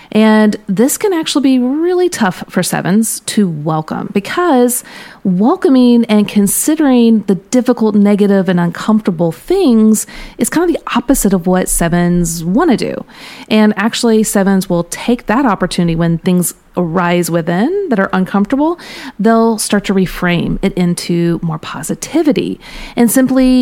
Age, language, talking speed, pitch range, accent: 30-49, English, 140 wpm, 180-230 Hz, American